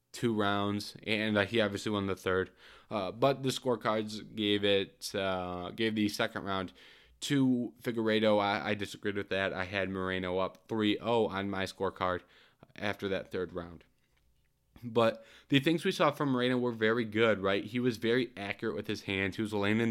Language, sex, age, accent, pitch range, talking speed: English, male, 20-39, American, 100-120 Hz, 185 wpm